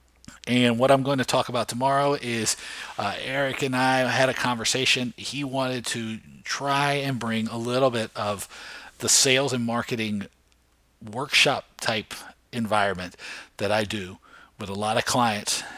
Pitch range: 100-125 Hz